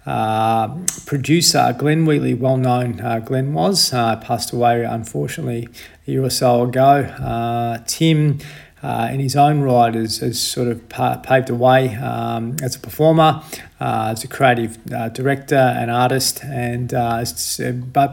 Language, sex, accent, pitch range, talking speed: English, male, Australian, 120-145 Hz, 145 wpm